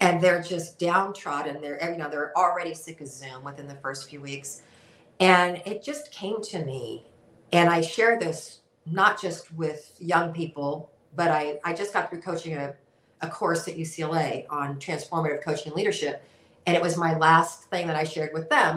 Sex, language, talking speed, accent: female, English, 190 wpm, American